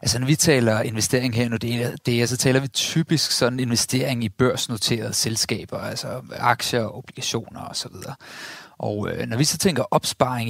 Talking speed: 150 wpm